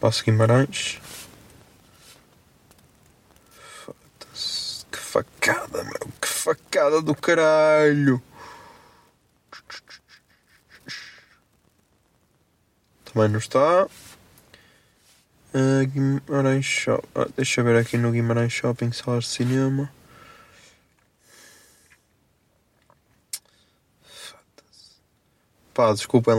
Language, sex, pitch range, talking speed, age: Portuguese, male, 115-130 Hz, 65 wpm, 20-39